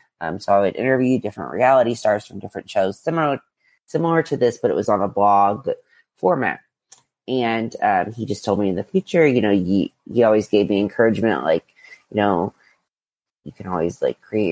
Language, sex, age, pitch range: English, female, 30-49, 100-140 Hz